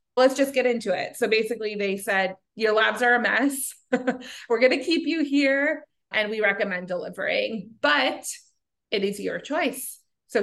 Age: 20-39